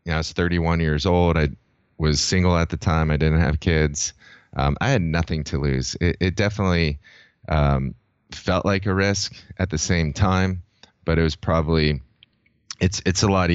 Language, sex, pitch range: English, male, 75-90 Hz